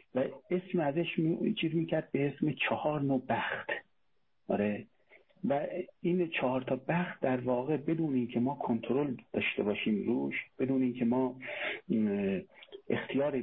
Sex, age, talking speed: male, 50-69, 135 wpm